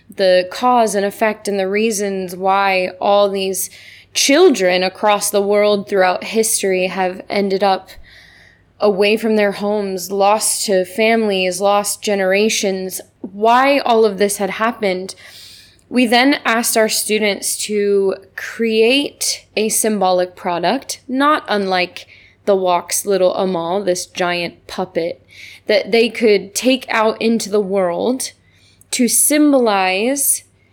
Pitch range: 190-225 Hz